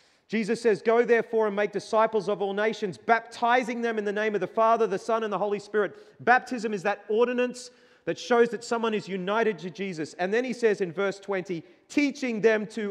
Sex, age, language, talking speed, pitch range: male, 30-49, English, 215 wpm, 155-205 Hz